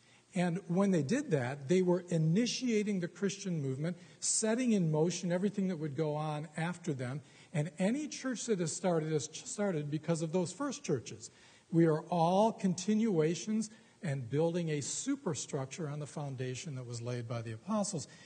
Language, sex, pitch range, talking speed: English, male, 135-185 Hz, 170 wpm